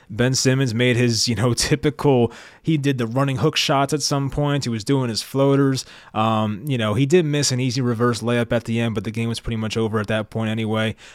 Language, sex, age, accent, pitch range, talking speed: English, male, 20-39, American, 110-140 Hz, 240 wpm